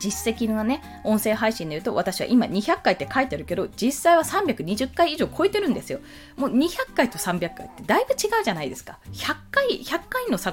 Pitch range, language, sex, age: 205-345 Hz, Japanese, female, 20-39